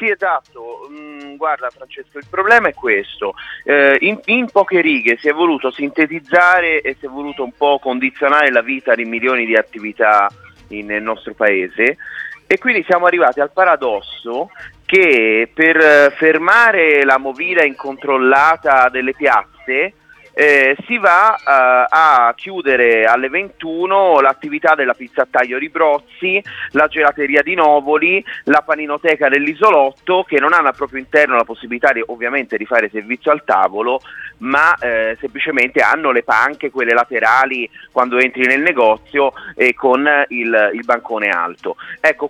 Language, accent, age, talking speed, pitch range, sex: Italian, native, 30-49, 140 wpm, 125-180 Hz, male